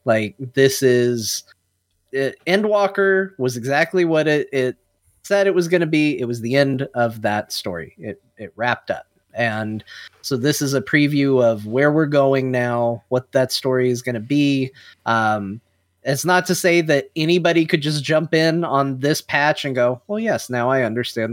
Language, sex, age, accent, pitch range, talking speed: English, male, 30-49, American, 115-150 Hz, 185 wpm